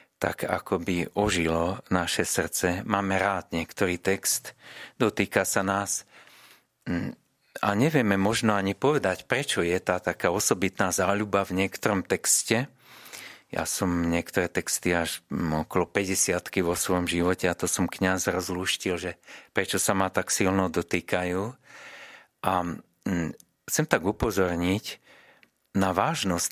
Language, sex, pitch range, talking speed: Slovak, male, 90-100 Hz, 125 wpm